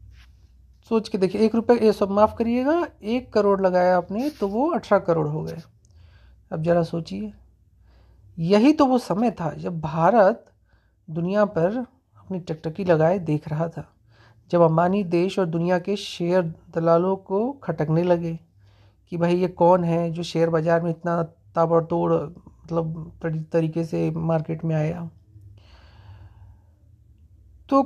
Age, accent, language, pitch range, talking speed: 30-49, native, Hindi, 160-205 Hz, 140 wpm